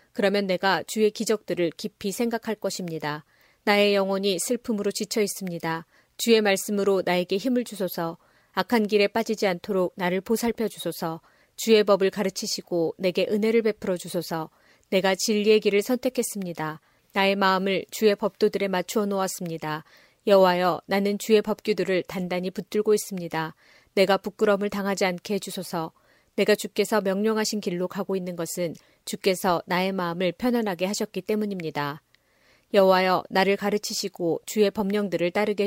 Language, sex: Korean, female